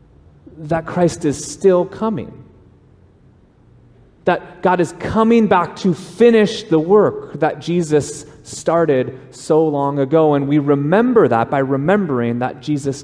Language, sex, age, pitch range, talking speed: English, male, 30-49, 130-185 Hz, 130 wpm